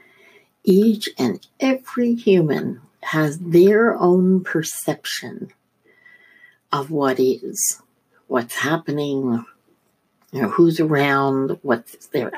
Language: English